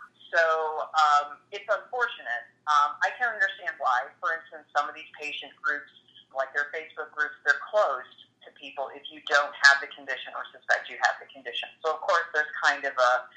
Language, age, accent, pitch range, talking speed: English, 30-49, American, 135-170 Hz, 195 wpm